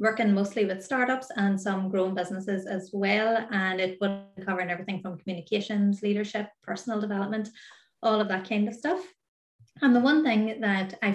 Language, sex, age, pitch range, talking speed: English, female, 30-49, 190-230 Hz, 170 wpm